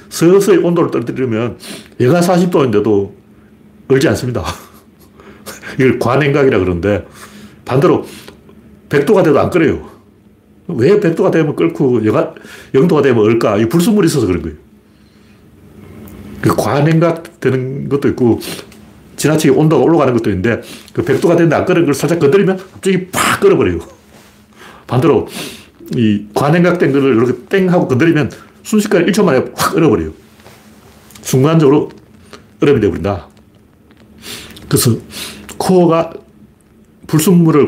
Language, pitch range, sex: Korean, 105-160 Hz, male